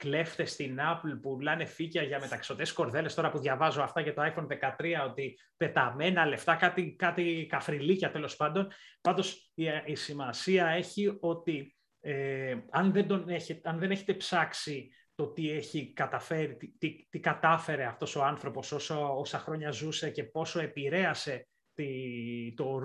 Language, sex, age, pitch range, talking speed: Greek, male, 30-49, 140-170 Hz, 155 wpm